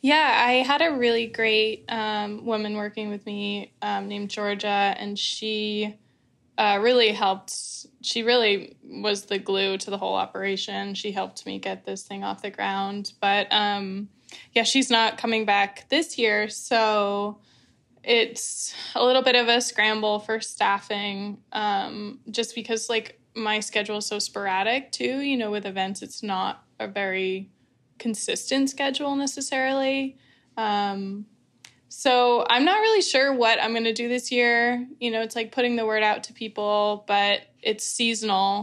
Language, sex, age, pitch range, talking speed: English, female, 10-29, 200-235 Hz, 160 wpm